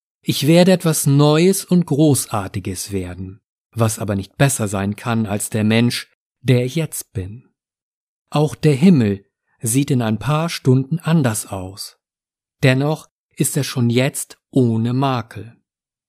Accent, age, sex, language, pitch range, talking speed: German, 50-69, male, German, 115-160 Hz, 140 wpm